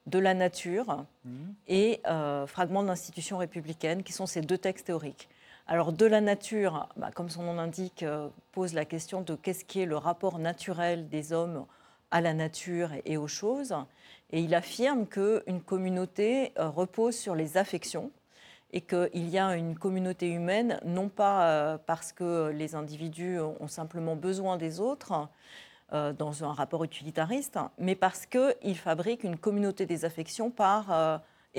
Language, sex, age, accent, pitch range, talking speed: French, female, 40-59, French, 165-200 Hz, 175 wpm